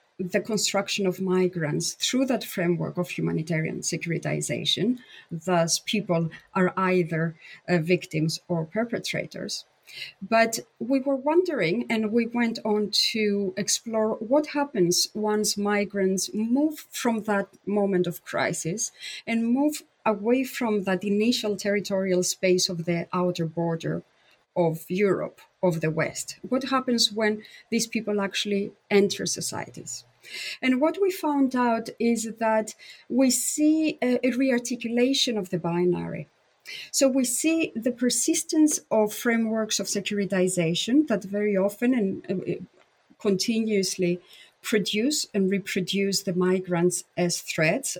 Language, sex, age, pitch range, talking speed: English, female, 30-49, 180-240 Hz, 125 wpm